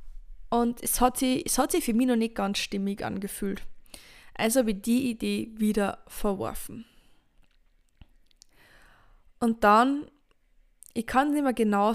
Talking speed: 125 wpm